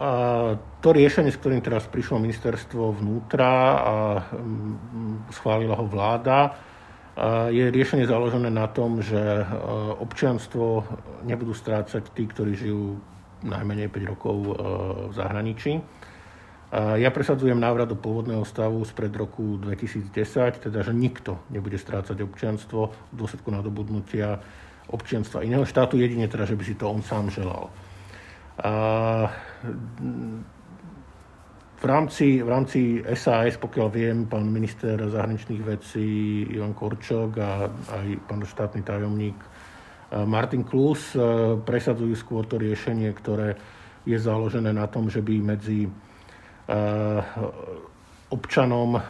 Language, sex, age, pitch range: Slovak, male, 50-69, 105-115 Hz